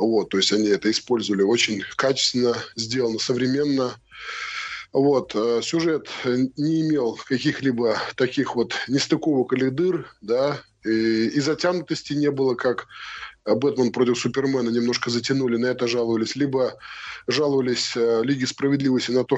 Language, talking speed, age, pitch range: Russian, 130 wpm, 20-39, 120-155 Hz